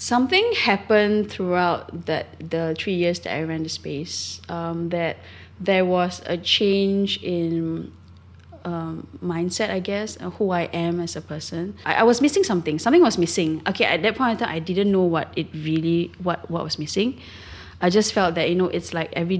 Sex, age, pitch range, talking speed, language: female, 20-39, 155-185 Hz, 195 wpm, English